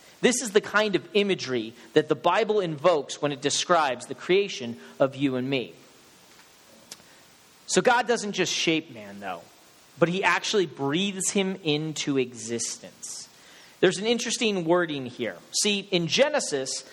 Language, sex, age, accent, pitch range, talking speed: English, male, 40-59, American, 150-200 Hz, 145 wpm